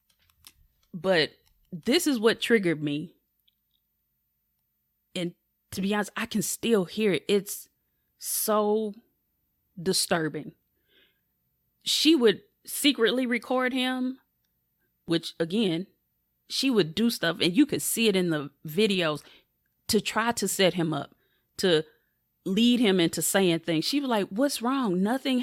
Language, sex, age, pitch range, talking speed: English, female, 30-49, 180-255 Hz, 130 wpm